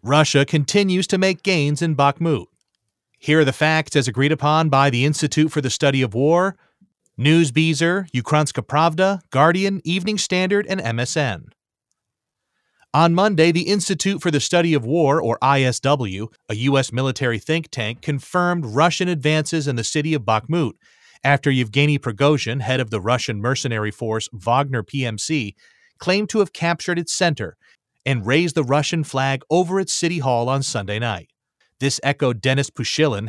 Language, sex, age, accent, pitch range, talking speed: English, male, 30-49, American, 125-165 Hz, 155 wpm